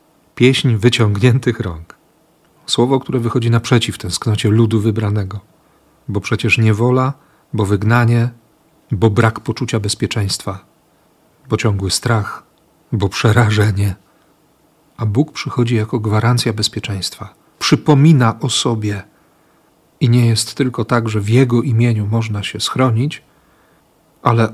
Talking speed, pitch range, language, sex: 110 wpm, 110-130 Hz, Polish, male